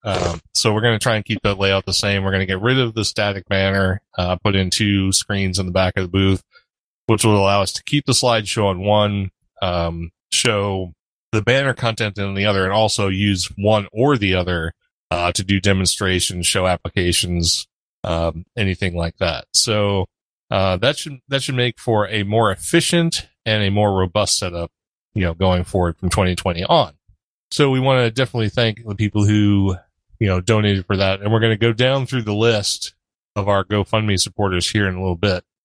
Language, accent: English, American